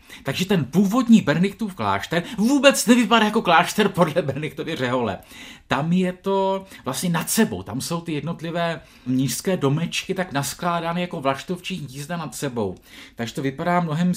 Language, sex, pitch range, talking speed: Czech, male, 130-185 Hz, 150 wpm